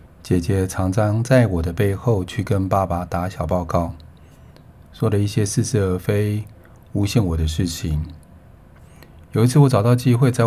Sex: male